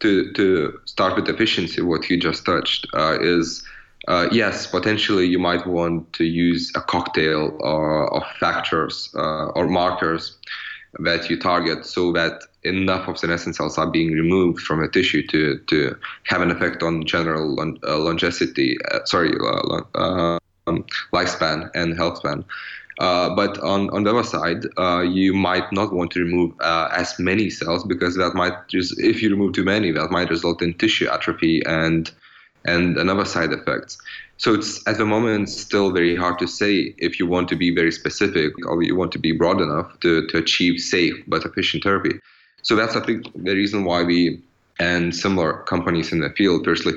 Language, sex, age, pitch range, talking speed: English, male, 20-39, 85-95 Hz, 185 wpm